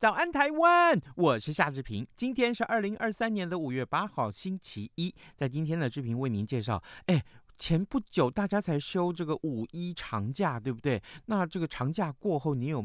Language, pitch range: Chinese, 105-155 Hz